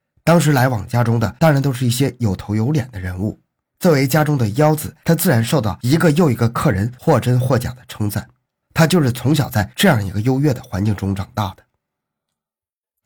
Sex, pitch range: male, 115-150 Hz